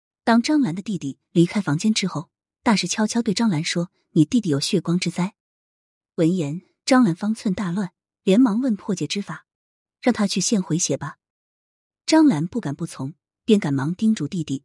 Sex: female